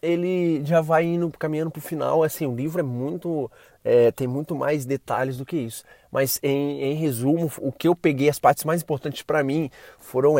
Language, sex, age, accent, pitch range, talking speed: Portuguese, male, 20-39, Brazilian, 130-170 Hz, 200 wpm